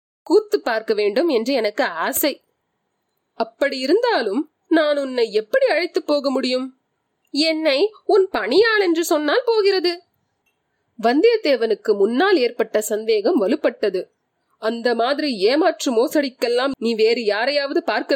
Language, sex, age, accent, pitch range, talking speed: Tamil, female, 30-49, native, 260-380 Hz, 105 wpm